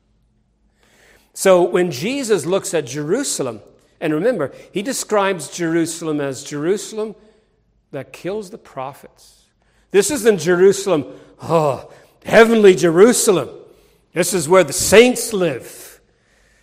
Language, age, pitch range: English, 50-69, 135-195 Hz